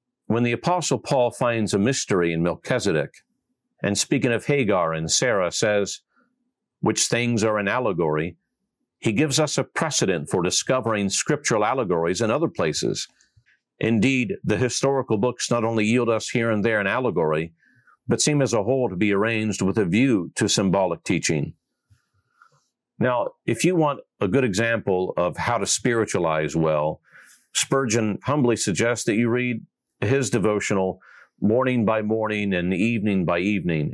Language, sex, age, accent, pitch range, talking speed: English, male, 50-69, American, 100-130 Hz, 155 wpm